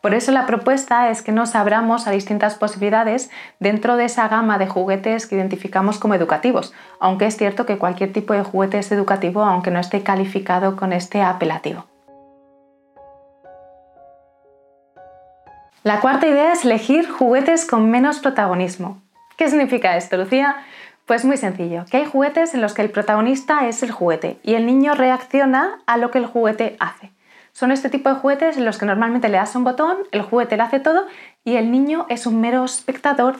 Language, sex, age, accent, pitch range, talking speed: Spanish, female, 20-39, Spanish, 200-260 Hz, 180 wpm